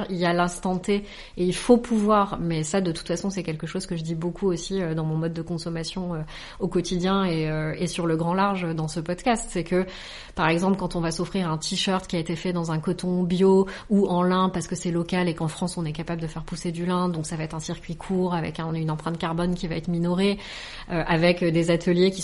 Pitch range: 170-195 Hz